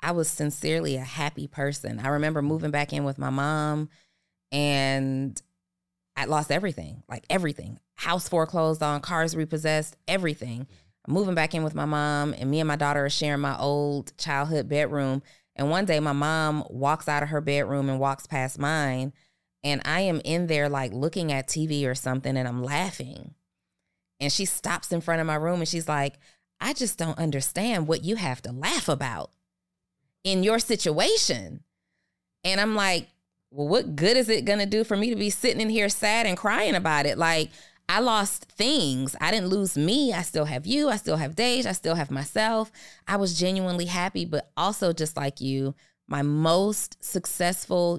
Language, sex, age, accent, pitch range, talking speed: English, female, 20-39, American, 135-175 Hz, 190 wpm